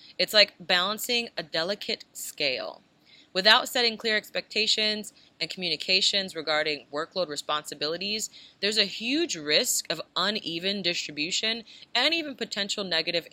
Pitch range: 170-230 Hz